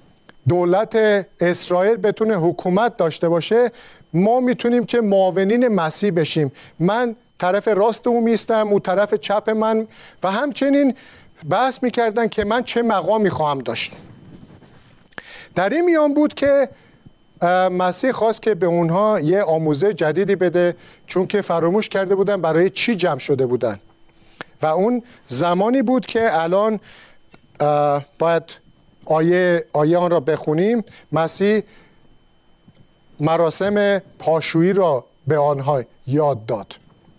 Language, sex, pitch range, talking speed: Persian, male, 165-220 Hz, 120 wpm